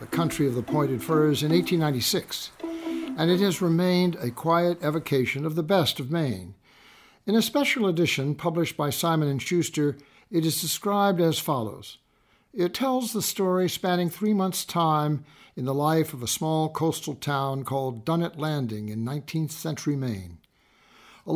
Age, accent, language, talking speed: 60-79, American, English, 160 wpm